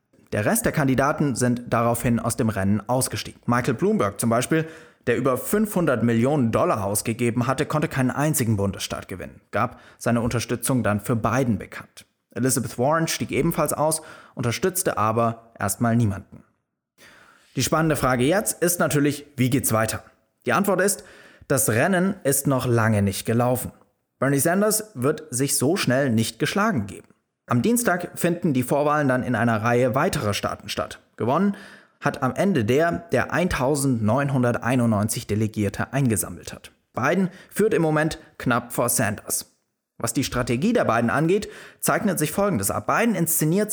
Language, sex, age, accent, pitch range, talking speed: German, male, 20-39, German, 115-155 Hz, 150 wpm